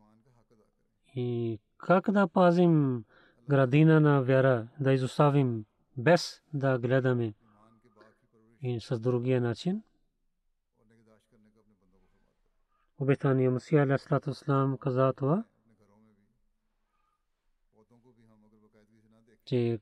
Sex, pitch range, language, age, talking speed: male, 120-150 Hz, Bulgarian, 30-49, 75 wpm